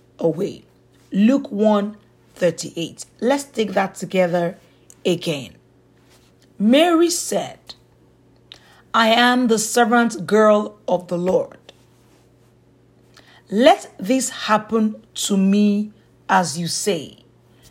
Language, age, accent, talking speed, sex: English, 40-59, Nigerian, 90 wpm, female